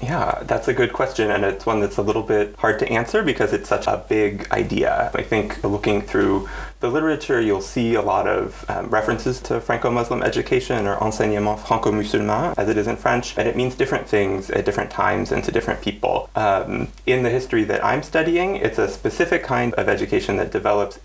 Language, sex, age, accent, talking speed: English, male, 30-49, American, 205 wpm